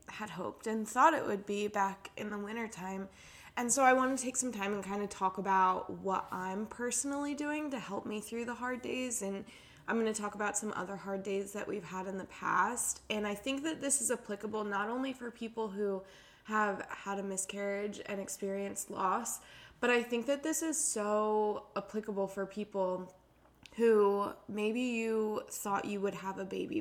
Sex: female